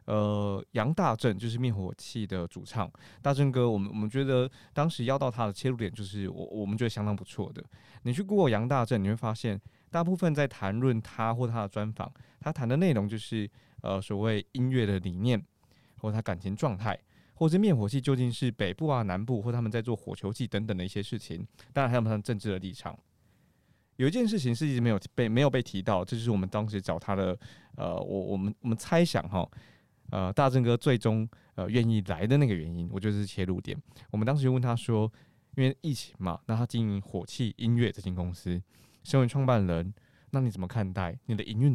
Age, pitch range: 20-39, 100-130 Hz